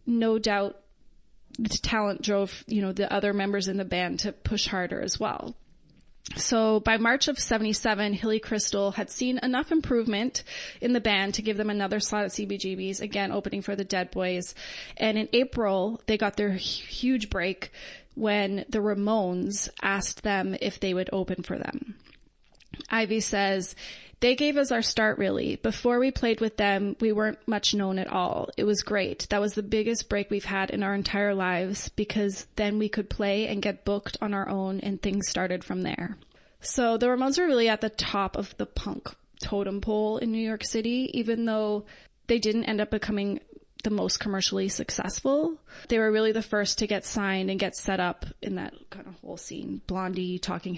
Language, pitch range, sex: English, 195-225 Hz, female